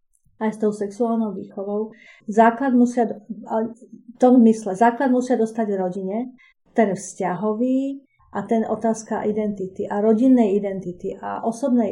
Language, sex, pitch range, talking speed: Slovak, female, 205-230 Hz, 110 wpm